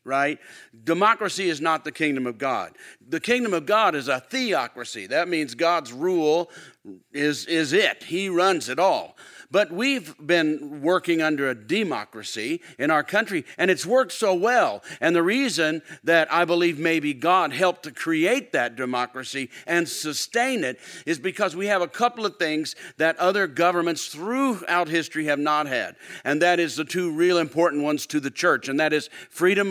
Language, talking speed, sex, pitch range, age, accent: English, 180 wpm, male, 150-185 Hz, 50-69, American